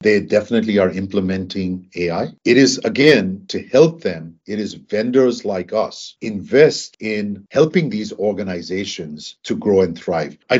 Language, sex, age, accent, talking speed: English, male, 50-69, Indian, 145 wpm